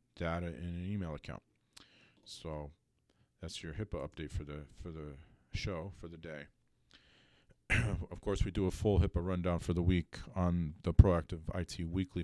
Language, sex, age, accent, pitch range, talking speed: English, male, 40-59, American, 85-100 Hz, 165 wpm